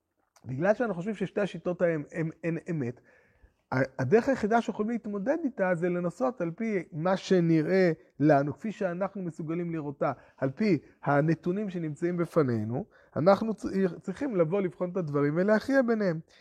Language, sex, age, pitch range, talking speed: Hebrew, male, 30-49, 155-195 Hz, 130 wpm